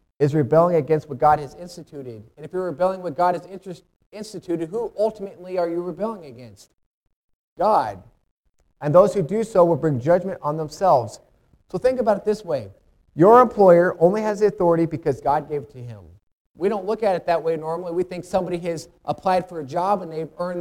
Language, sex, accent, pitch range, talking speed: English, male, American, 155-190 Hz, 200 wpm